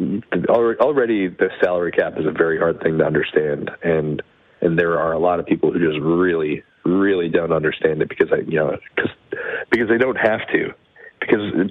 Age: 40-59